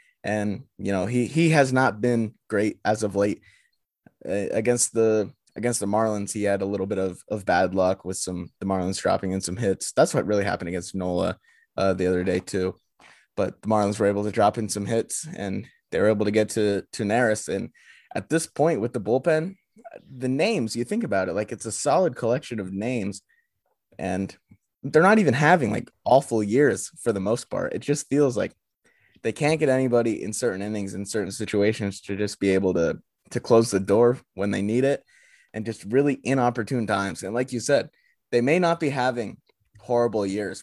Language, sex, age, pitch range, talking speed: English, male, 20-39, 100-125 Hz, 205 wpm